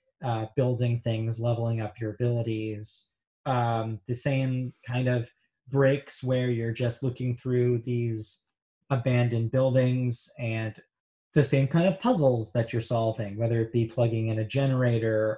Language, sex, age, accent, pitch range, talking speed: English, male, 30-49, American, 120-160 Hz, 145 wpm